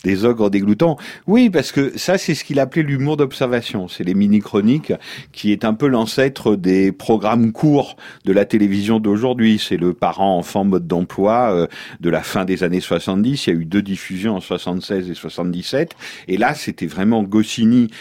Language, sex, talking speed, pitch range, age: French, male, 185 wpm, 90-125 Hz, 50-69